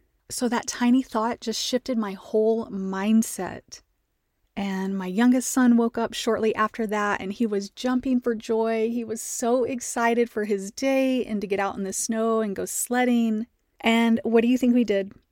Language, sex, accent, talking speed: English, female, American, 190 wpm